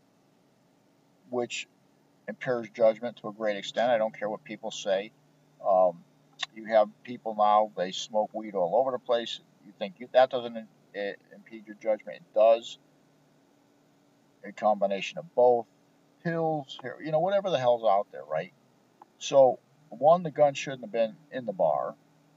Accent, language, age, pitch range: American, English, 50-69, 110-145 Hz